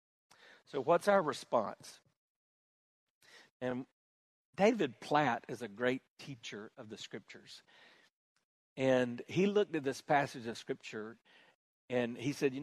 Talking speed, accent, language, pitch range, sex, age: 125 wpm, American, English, 120-155 Hz, male, 50-69